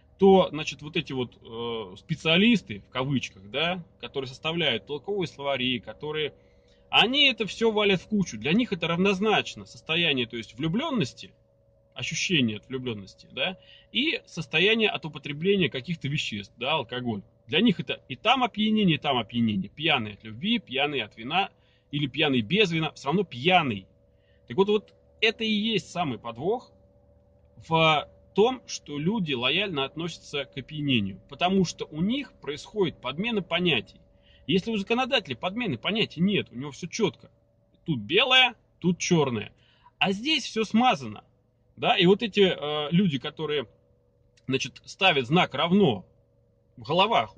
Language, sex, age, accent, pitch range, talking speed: Russian, male, 30-49, native, 115-190 Hz, 150 wpm